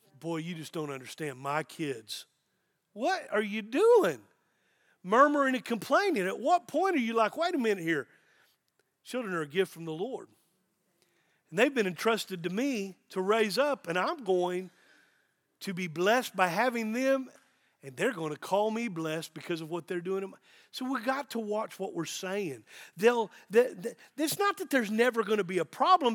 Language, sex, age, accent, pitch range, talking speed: English, male, 40-59, American, 185-265 Hz, 185 wpm